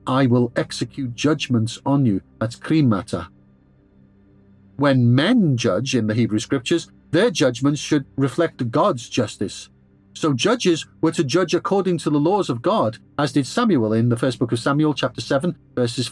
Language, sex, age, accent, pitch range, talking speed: English, male, 50-69, British, 110-155 Hz, 165 wpm